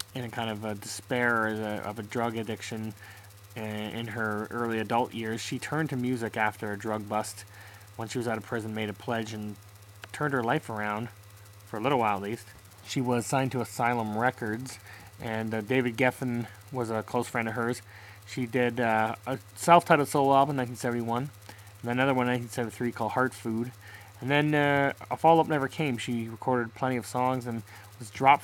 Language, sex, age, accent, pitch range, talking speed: English, male, 20-39, American, 105-125 Hz, 195 wpm